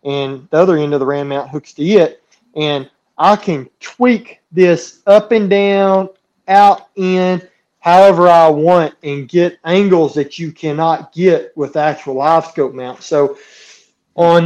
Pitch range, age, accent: 140-180 Hz, 30-49, American